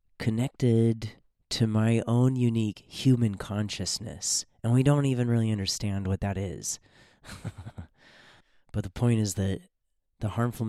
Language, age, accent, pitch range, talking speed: English, 30-49, American, 95-120 Hz, 130 wpm